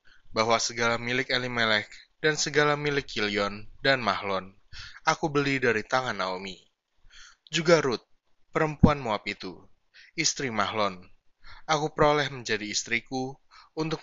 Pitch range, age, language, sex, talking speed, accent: 105-135 Hz, 20-39, Indonesian, male, 115 wpm, native